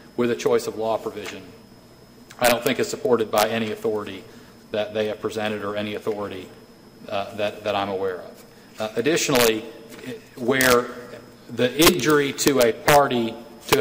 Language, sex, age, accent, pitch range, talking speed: English, male, 40-59, American, 110-135 Hz, 155 wpm